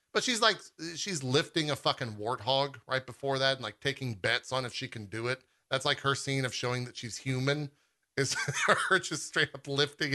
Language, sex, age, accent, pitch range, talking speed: English, male, 30-49, American, 115-140 Hz, 215 wpm